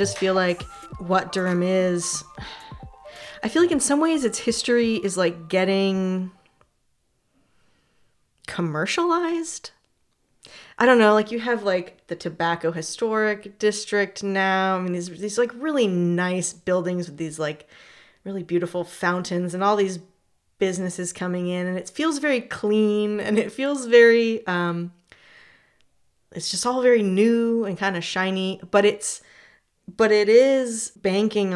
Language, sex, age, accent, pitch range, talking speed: English, female, 20-39, American, 170-210 Hz, 145 wpm